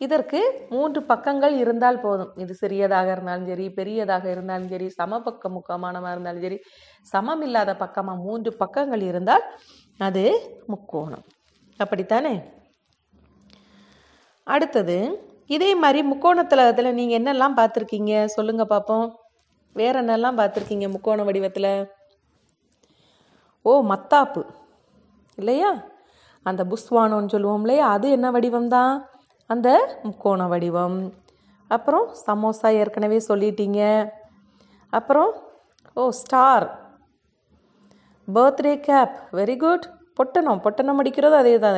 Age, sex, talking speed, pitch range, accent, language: 30-49, female, 95 wpm, 195-280 Hz, native, Tamil